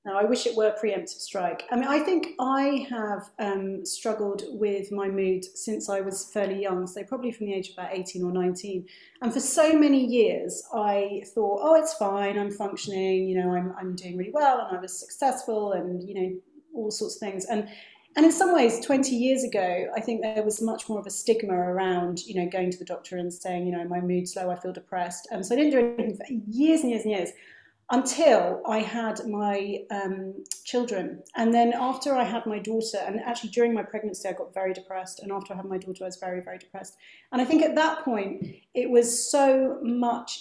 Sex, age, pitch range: female, 30-49, 190-240 Hz